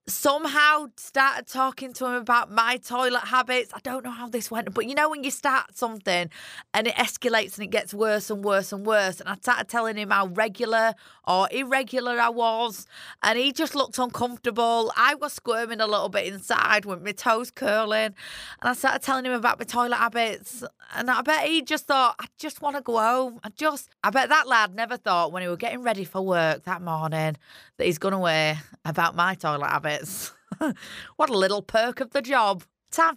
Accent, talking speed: British, 210 wpm